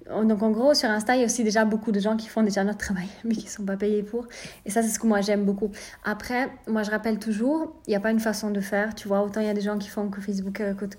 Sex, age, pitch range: female, 30-49, 210-240 Hz